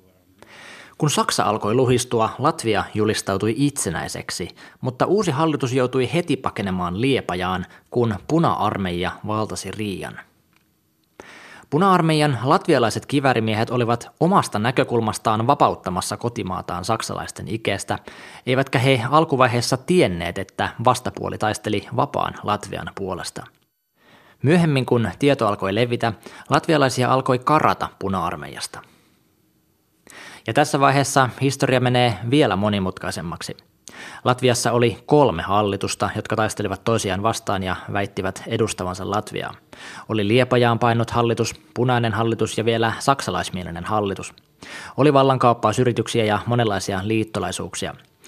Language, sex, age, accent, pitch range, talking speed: Finnish, male, 20-39, native, 105-135 Hz, 100 wpm